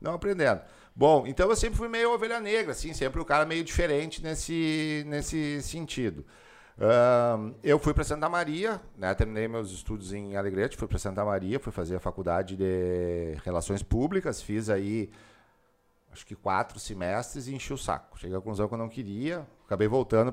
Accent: Brazilian